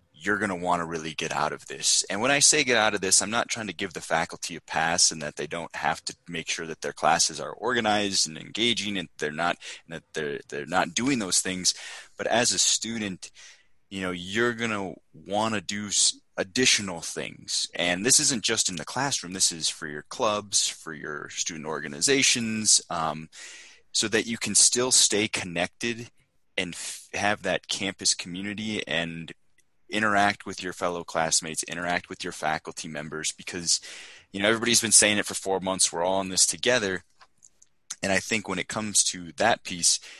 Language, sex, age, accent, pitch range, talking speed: English, male, 20-39, American, 85-105 Hz, 195 wpm